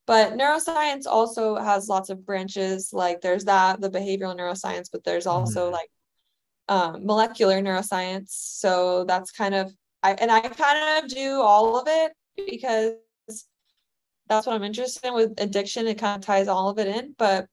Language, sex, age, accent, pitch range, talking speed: English, female, 20-39, American, 185-220 Hz, 170 wpm